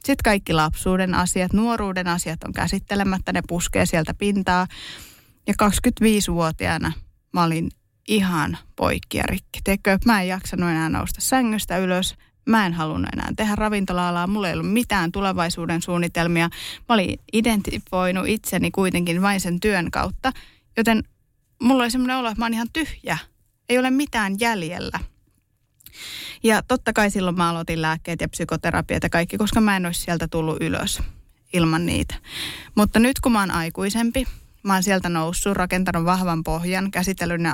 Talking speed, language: 155 wpm, Finnish